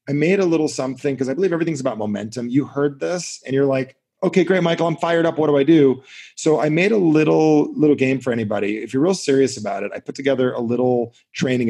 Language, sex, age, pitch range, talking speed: English, male, 30-49, 115-150 Hz, 245 wpm